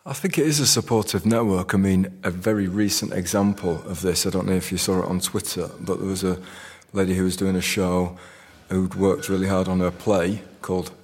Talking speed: 230 wpm